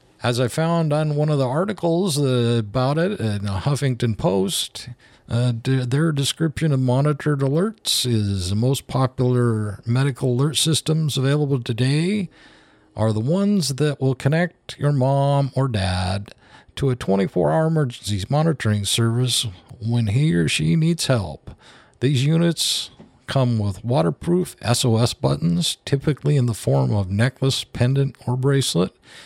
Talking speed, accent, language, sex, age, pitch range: 135 wpm, American, English, male, 50-69, 115-150 Hz